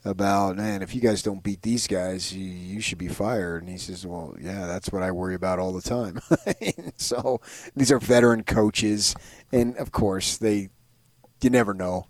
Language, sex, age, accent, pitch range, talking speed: English, male, 30-49, American, 95-115 Hz, 195 wpm